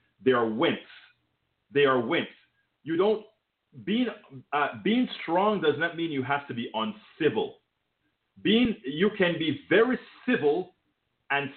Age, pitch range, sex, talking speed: 40-59, 125-185 Hz, male, 140 wpm